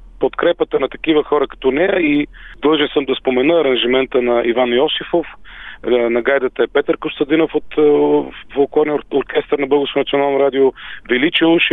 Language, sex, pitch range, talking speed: Bulgarian, male, 135-170 Hz, 150 wpm